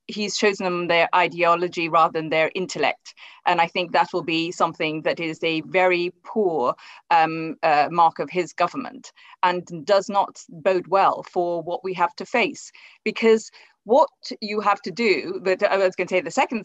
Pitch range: 170-220 Hz